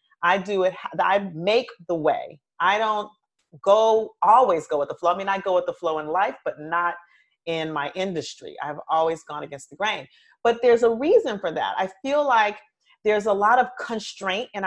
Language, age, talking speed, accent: English, 40-59, 205 wpm, American